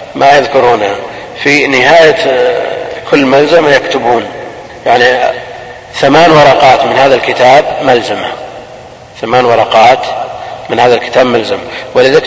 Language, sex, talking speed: Arabic, male, 105 wpm